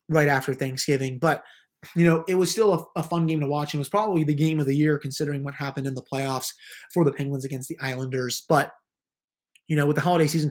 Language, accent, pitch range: English, American, 140-170 Hz